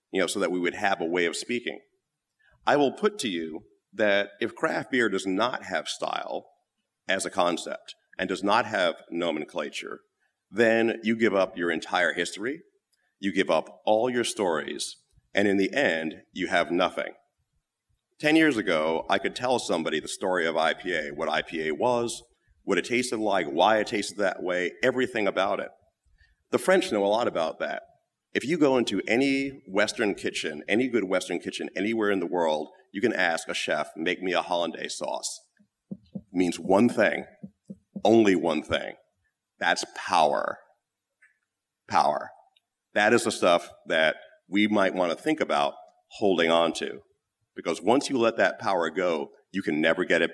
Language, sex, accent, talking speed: English, male, American, 175 wpm